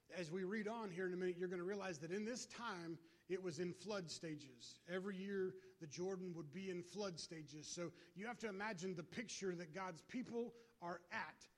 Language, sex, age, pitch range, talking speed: English, male, 30-49, 175-210 Hz, 220 wpm